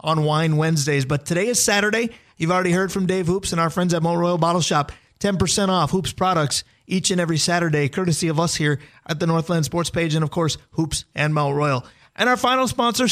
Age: 30-49